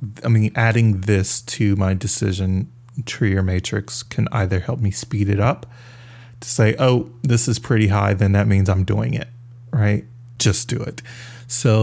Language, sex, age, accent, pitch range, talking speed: English, male, 30-49, American, 105-120 Hz, 180 wpm